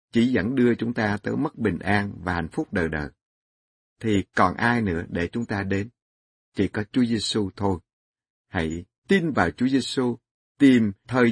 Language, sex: Vietnamese, male